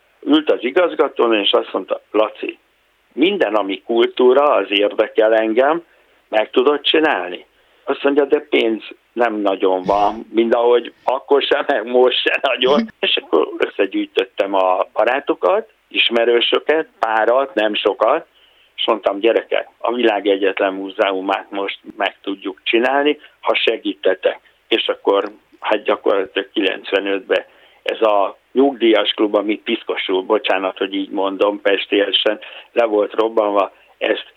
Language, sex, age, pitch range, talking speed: Hungarian, male, 60-79, 100-150 Hz, 125 wpm